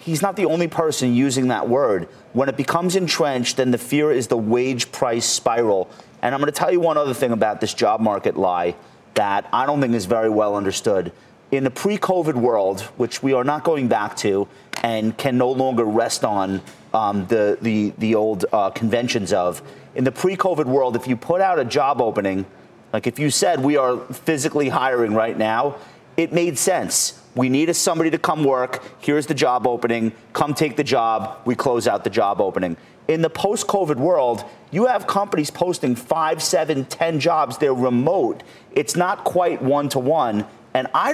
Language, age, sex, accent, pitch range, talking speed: English, 30-49, male, American, 115-160 Hz, 190 wpm